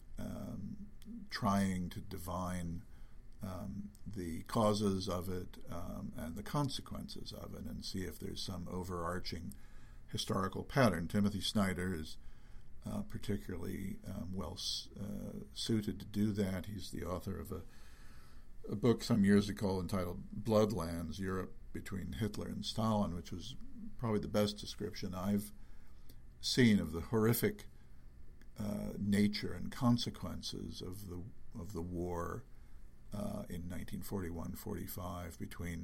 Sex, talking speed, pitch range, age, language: male, 125 wpm, 85-105 Hz, 60-79, English